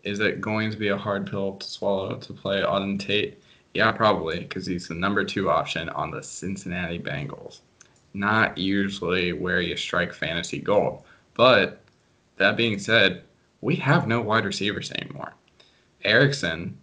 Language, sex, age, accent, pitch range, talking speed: English, male, 20-39, American, 95-125 Hz, 155 wpm